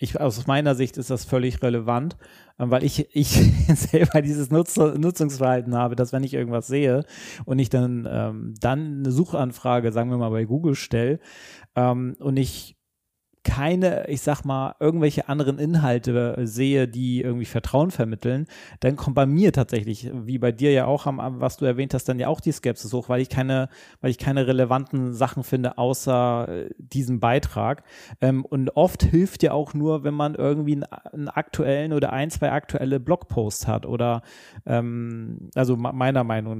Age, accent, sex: 30-49, German, male